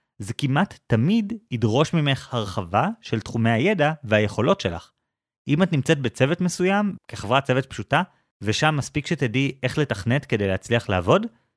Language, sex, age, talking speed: Hebrew, male, 30-49, 140 wpm